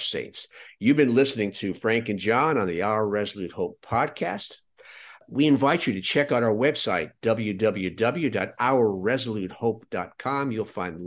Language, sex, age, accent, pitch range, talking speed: English, male, 50-69, American, 95-135 Hz, 135 wpm